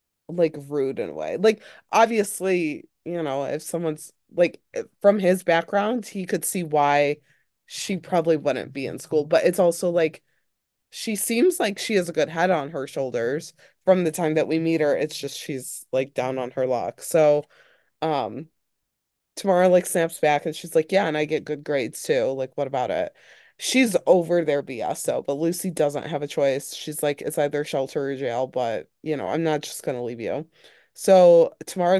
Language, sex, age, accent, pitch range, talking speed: English, female, 20-39, American, 145-180 Hz, 195 wpm